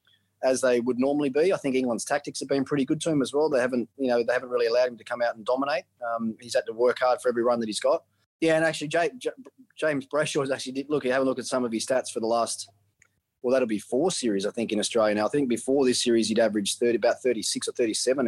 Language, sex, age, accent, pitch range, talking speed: English, male, 20-39, Australian, 110-130 Hz, 285 wpm